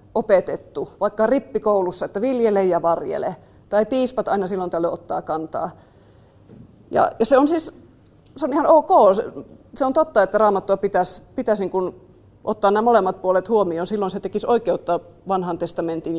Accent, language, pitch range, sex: native, Finnish, 175-220 Hz, female